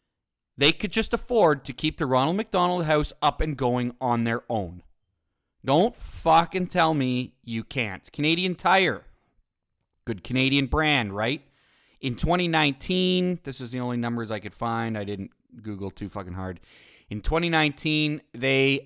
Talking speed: 150 wpm